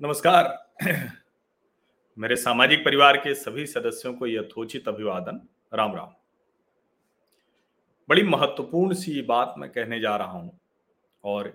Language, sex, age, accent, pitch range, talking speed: Hindi, male, 40-59, native, 125-175 Hz, 120 wpm